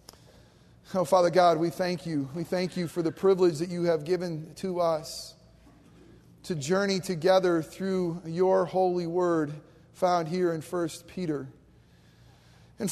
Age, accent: 40-59, American